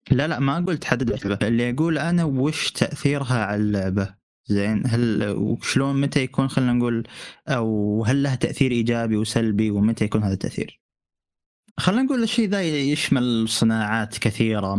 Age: 20-39